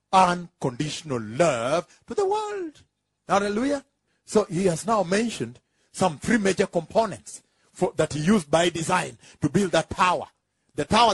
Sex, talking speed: male, 145 wpm